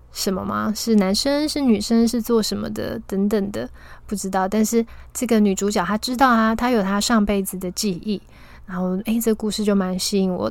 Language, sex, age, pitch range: Chinese, female, 20-39, 195-230 Hz